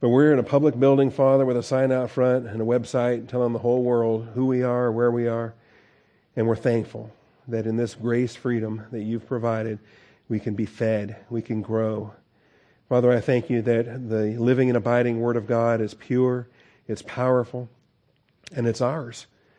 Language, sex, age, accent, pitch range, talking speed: English, male, 50-69, American, 115-130 Hz, 190 wpm